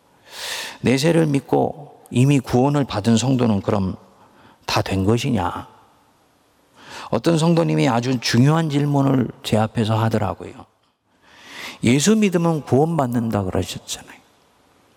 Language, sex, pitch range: Korean, male, 115-190 Hz